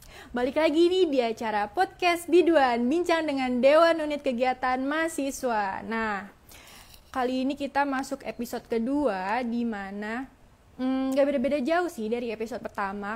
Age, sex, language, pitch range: 20-39, female, Indonesian, 215-270 Hz